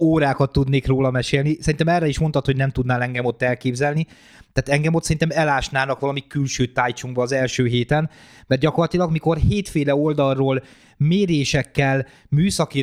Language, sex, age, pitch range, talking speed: Hungarian, male, 30-49, 125-155 Hz, 150 wpm